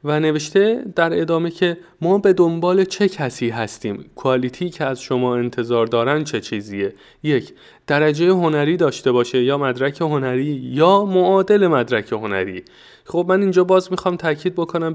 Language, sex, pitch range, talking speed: Persian, male, 125-160 Hz, 155 wpm